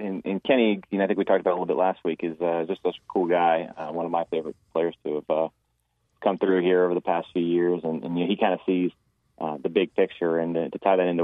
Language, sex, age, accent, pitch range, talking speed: English, male, 30-49, American, 80-90 Hz, 310 wpm